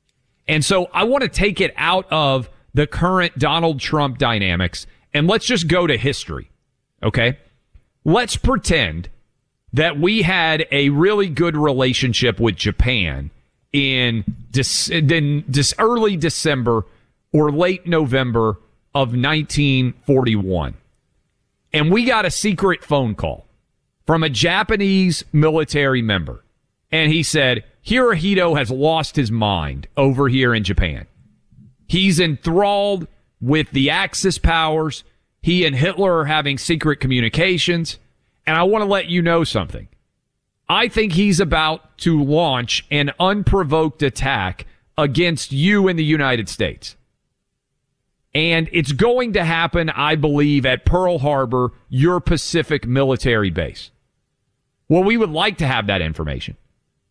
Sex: male